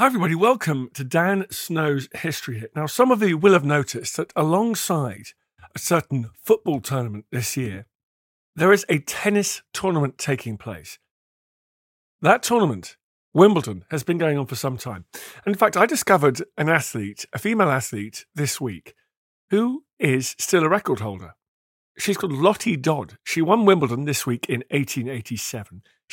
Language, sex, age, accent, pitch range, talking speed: English, male, 50-69, British, 115-180 Hz, 160 wpm